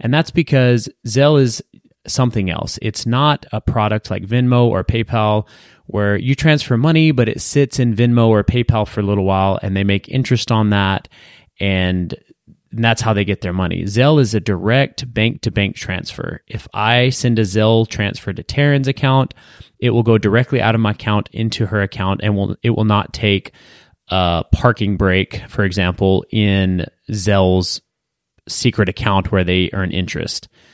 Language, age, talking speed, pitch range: English, 30-49, 175 wpm, 100-120 Hz